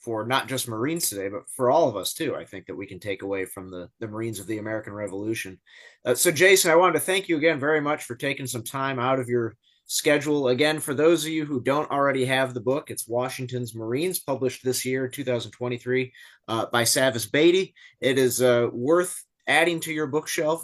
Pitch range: 120-155 Hz